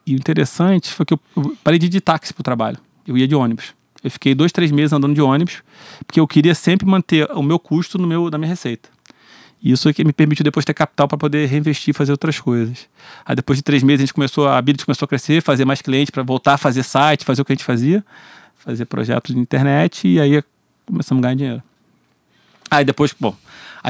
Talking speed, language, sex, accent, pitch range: 240 wpm, Portuguese, male, Brazilian, 140-170 Hz